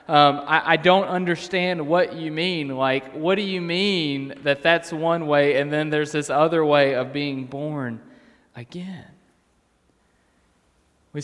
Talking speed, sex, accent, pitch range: 150 wpm, male, American, 120-155 Hz